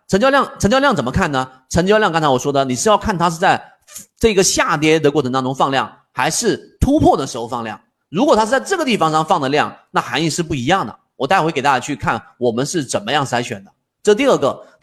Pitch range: 130-205 Hz